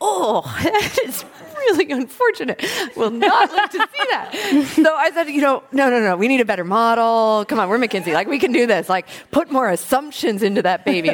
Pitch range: 170-275 Hz